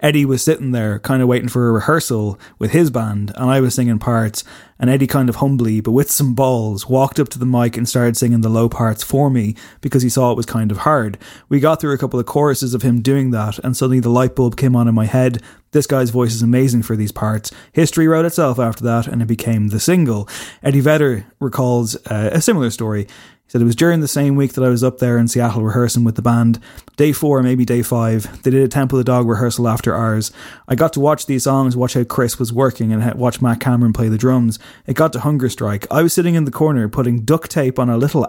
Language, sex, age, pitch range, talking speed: English, male, 20-39, 115-140 Hz, 255 wpm